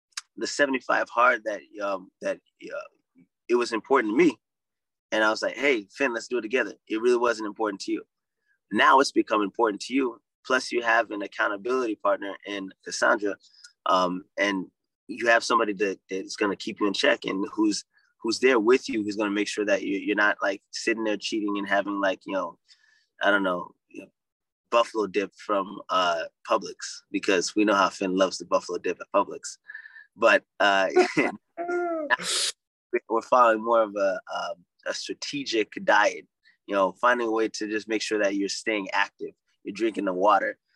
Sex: male